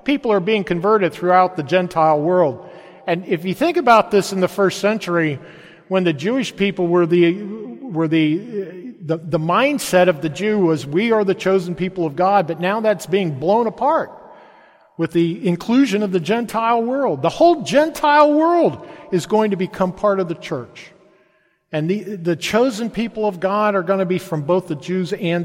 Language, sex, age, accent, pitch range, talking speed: English, male, 50-69, American, 170-215 Hz, 190 wpm